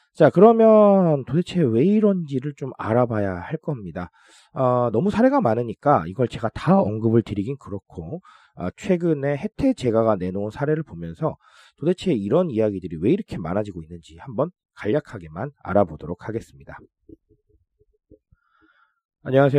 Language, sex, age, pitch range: Korean, male, 30-49, 95-160 Hz